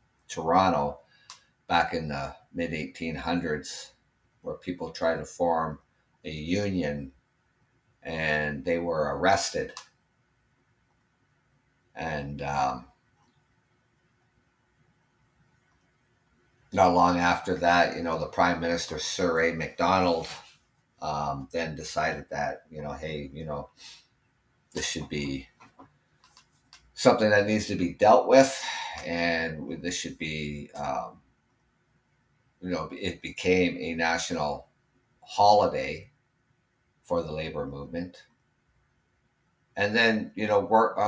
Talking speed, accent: 100 wpm, American